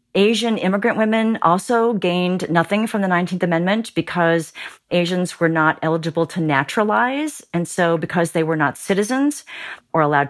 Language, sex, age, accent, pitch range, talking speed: English, female, 40-59, American, 155-200 Hz, 150 wpm